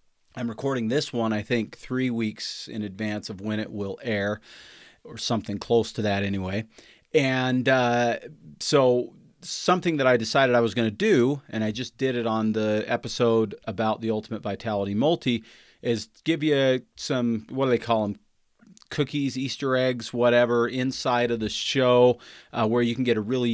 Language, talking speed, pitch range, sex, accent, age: English, 180 wpm, 105-125 Hz, male, American, 40-59